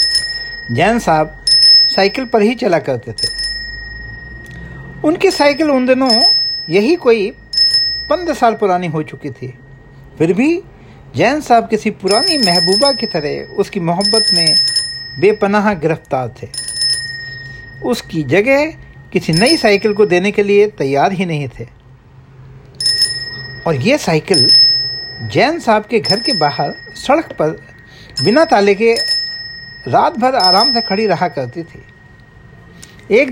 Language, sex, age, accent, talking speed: Hindi, male, 60-79, native, 130 wpm